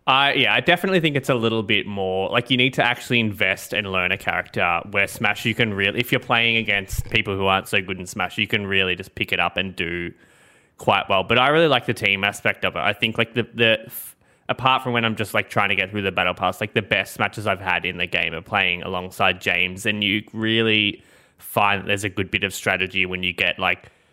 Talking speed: 255 wpm